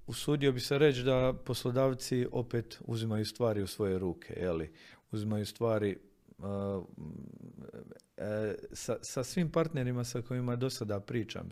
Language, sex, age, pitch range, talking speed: Croatian, male, 40-59, 90-115 Hz, 135 wpm